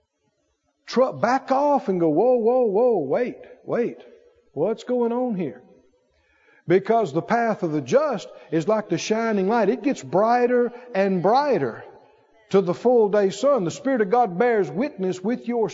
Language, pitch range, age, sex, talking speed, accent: English, 200-270 Hz, 50-69, male, 160 wpm, American